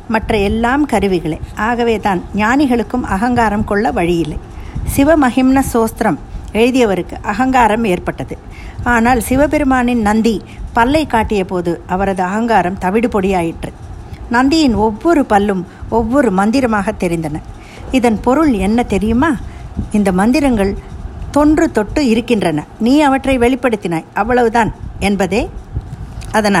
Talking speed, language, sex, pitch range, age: 95 wpm, Tamil, female, 195-250 Hz, 50-69